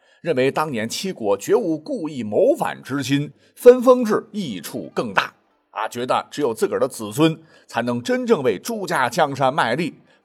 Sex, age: male, 50-69